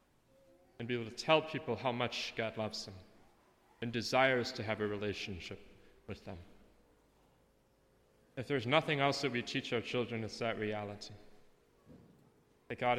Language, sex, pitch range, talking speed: English, male, 115-145 Hz, 150 wpm